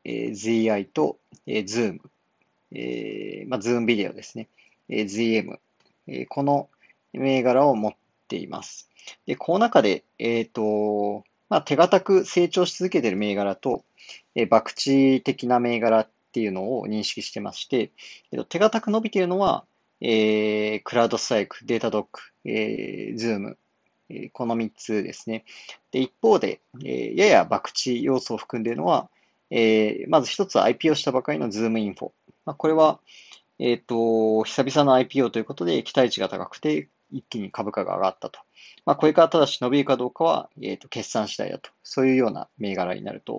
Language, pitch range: Japanese, 105-135 Hz